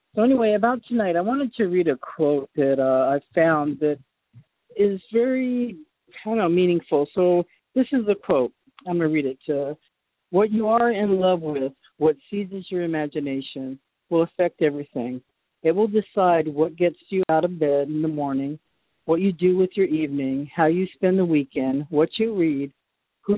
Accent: American